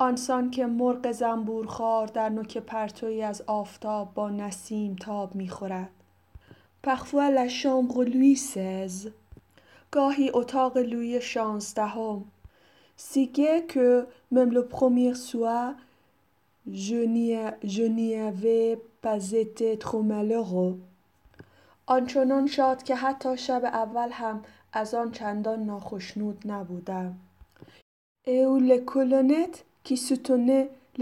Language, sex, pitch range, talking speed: Persian, female, 205-250 Hz, 90 wpm